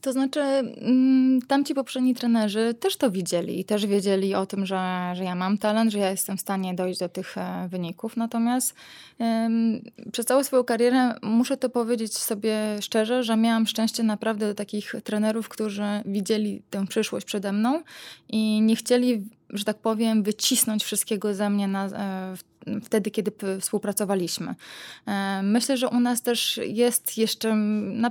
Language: Polish